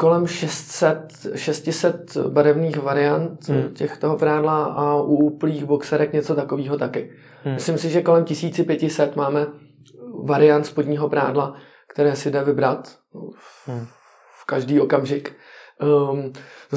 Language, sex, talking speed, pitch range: Czech, male, 110 wpm, 140-160 Hz